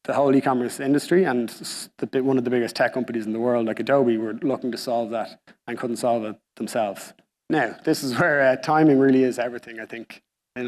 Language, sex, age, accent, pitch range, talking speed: English, male, 30-49, Irish, 115-130 Hz, 220 wpm